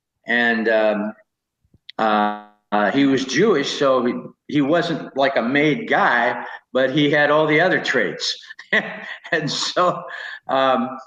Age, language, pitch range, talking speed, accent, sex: 60-79, English, 120-155 Hz, 135 wpm, American, male